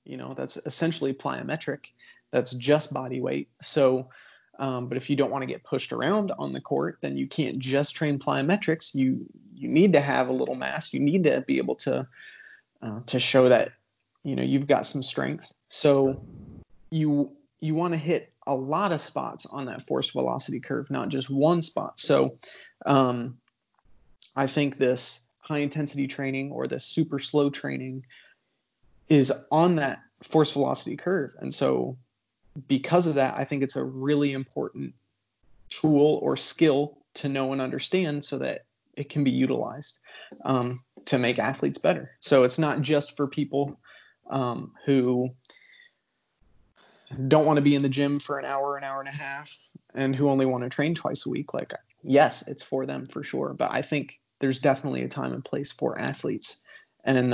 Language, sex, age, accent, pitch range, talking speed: English, male, 30-49, American, 125-150 Hz, 180 wpm